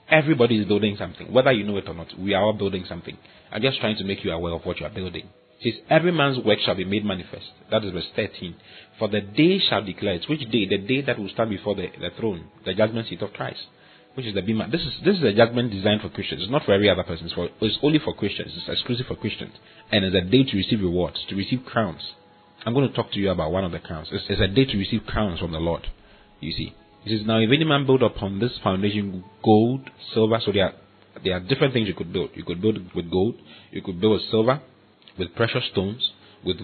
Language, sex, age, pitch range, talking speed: English, male, 30-49, 95-115 Hz, 260 wpm